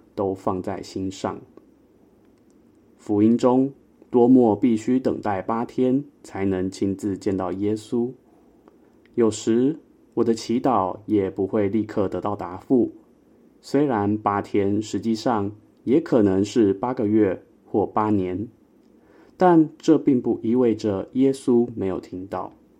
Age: 20-39